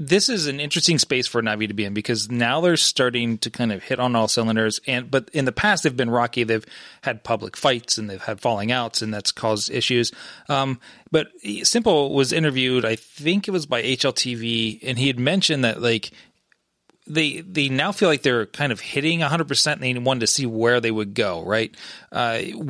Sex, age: male, 30-49